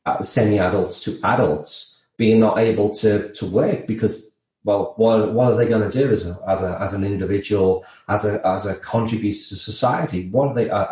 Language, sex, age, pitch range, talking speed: English, male, 30-49, 105-140 Hz, 205 wpm